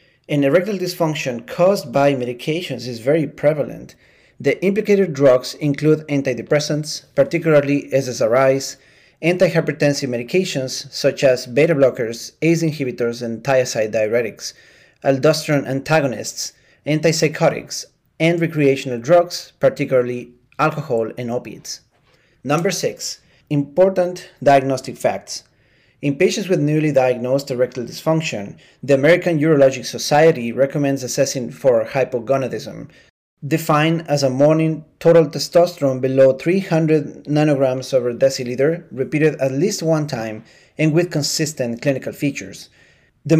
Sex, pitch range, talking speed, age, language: male, 130-160 Hz, 110 wpm, 30-49, English